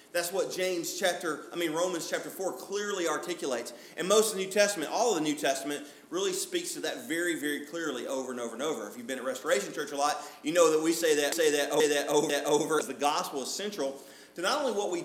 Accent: American